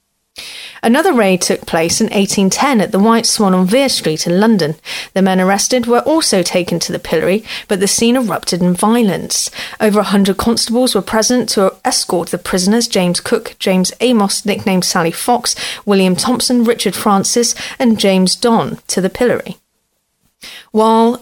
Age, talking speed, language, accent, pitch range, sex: 30-49, 165 wpm, English, British, 185-235 Hz, female